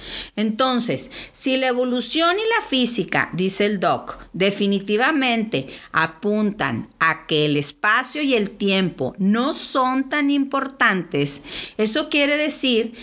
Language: English